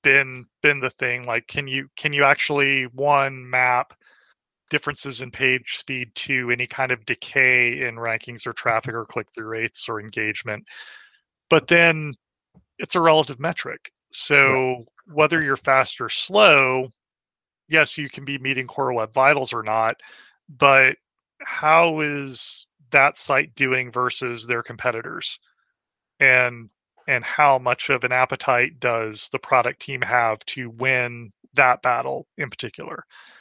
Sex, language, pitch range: male, English, 115-140 Hz